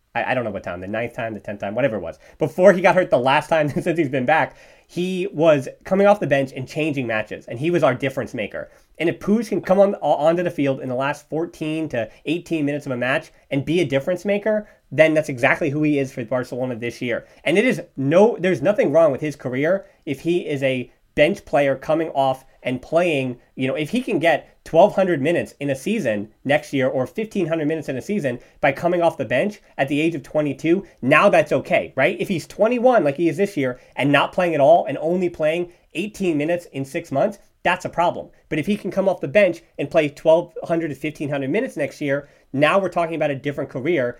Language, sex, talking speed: English, male, 240 wpm